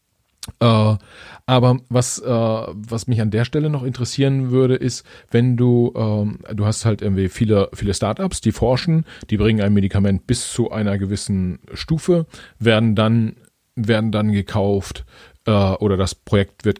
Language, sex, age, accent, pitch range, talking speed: German, male, 40-59, German, 100-120 Hz, 155 wpm